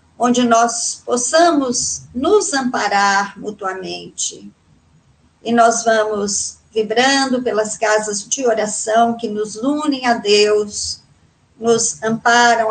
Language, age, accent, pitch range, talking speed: Portuguese, 50-69, Brazilian, 215-255 Hz, 100 wpm